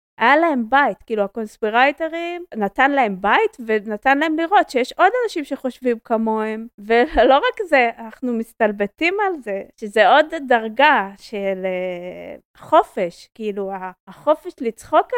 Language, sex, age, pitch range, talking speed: Hebrew, female, 20-39, 205-285 Hz, 125 wpm